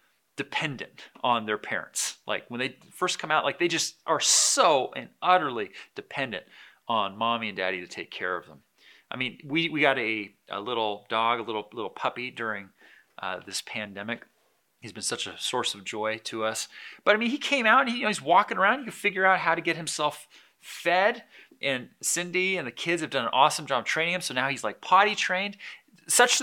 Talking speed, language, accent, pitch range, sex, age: 215 wpm, English, American, 135-205 Hz, male, 30-49